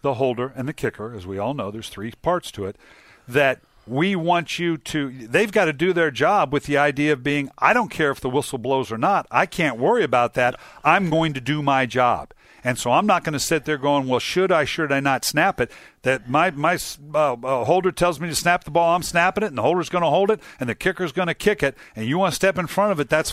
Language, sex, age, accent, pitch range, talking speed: English, male, 50-69, American, 125-160 Hz, 270 wpm